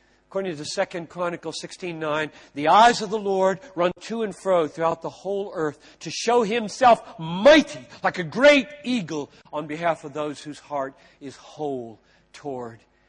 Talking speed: 160 wpm